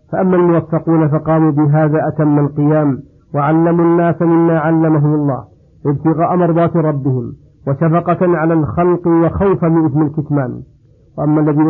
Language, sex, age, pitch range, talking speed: Arabic, male, 50-69, 155-170 Hz, 125 wpm